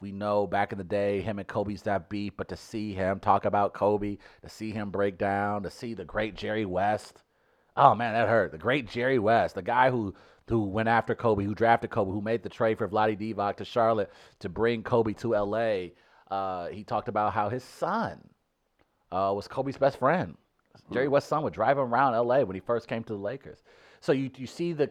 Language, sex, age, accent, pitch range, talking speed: English, male, 30-49, American, 95-120 Hz, 225 wpm